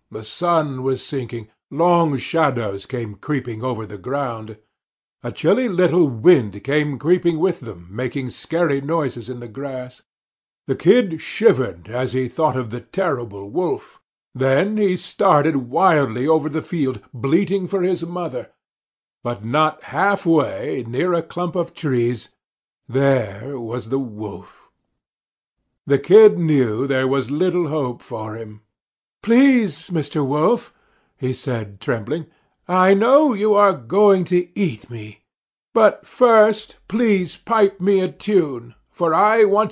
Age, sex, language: 50-69, male, Korean